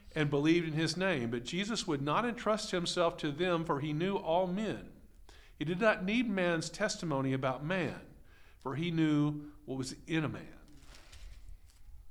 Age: 50-69